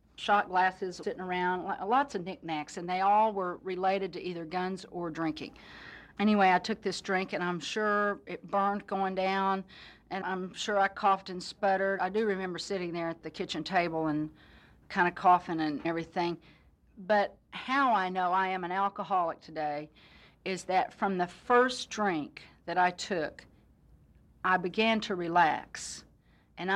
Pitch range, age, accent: 175-205 Hz, 40-59, American